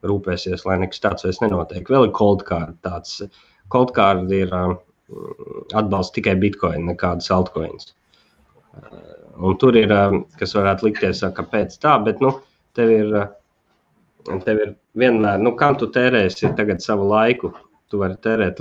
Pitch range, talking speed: 90-110 Hz, 140 wpm